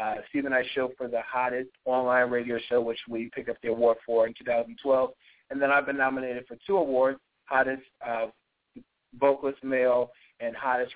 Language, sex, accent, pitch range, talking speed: English, male, American, 120-145 Hz, 180 wpm